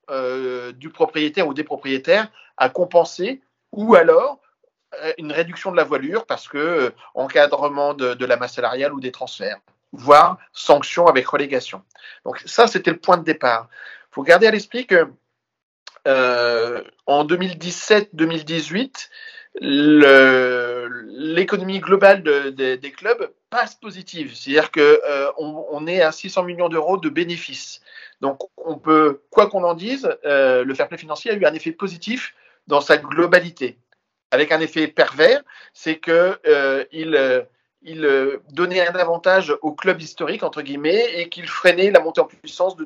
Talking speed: 160 wpm